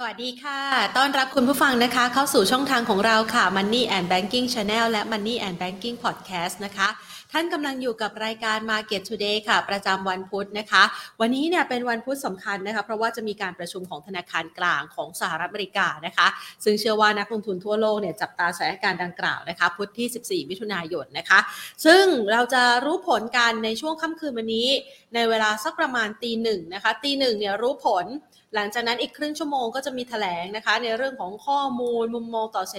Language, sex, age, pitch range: Thai, female, 30-49, 195-245 Hz